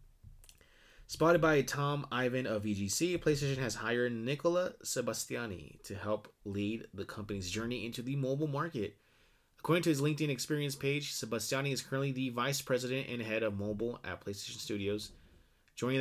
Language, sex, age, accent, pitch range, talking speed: English, male, 20-39, American, 110-140 Hz, 155 wpm